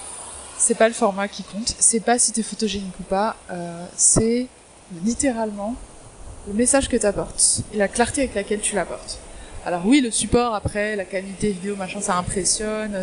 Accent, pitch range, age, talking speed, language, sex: French, 195-240 Hz, 20-39, 175 wpm, French, female